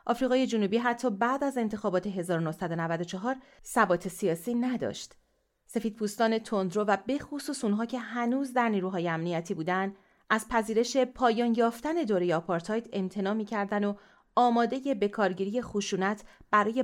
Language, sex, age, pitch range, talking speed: English, female, 30-49, 185-245 Hz, 125 wpm